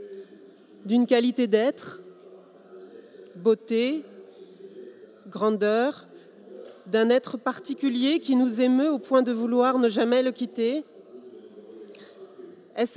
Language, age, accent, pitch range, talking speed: Italian, 40-59, French, 230-300 Hz, 95 wpm